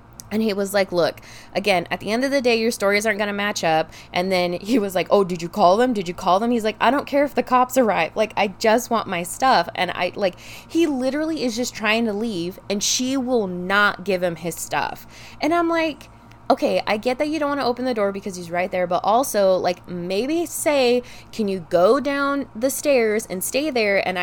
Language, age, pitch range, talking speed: English, 20-39, 180-250 Hz, 245 wpm